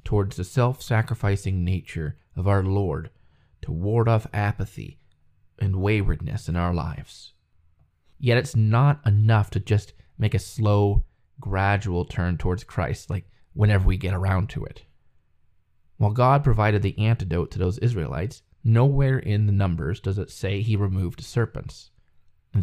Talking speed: 145 wpm